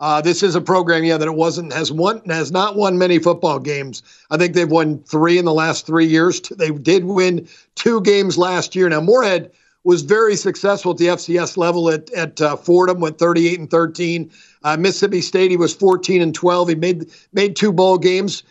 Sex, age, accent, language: male, 50-69, American, English